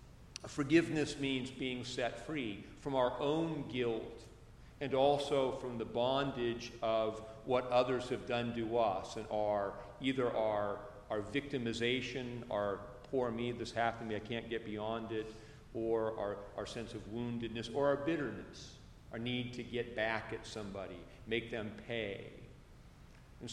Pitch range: 115-135 Hz